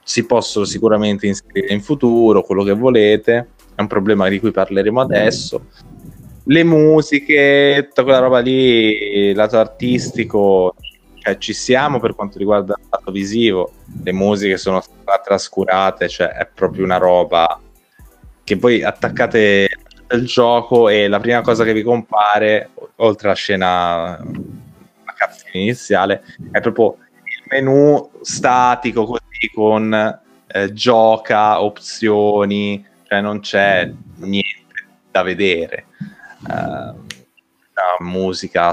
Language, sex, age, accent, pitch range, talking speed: Italian, male, 20-39, native, 100-115 Hz, 120 wpm